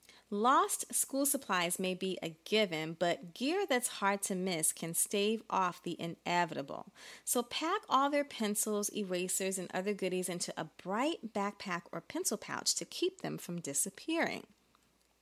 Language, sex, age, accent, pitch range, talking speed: English, female, 30-49, American, 185-260 Hz, 155 wpm